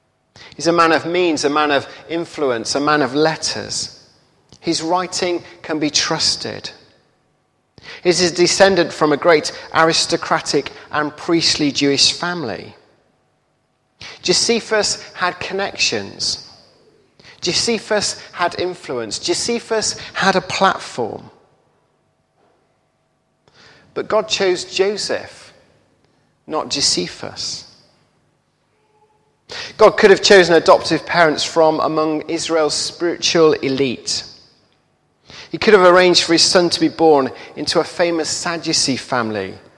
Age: 40-59